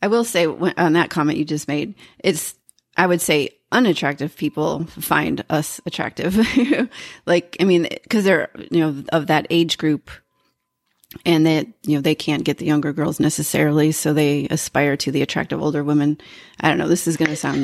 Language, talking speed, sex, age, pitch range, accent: English, 190 wpm, female, 30-49, 150-175 Hz, American